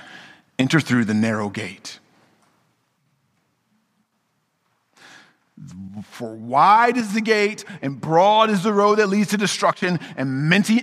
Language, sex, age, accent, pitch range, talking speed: English, male, 40-59, American, 155-220 Hz, 115 wpm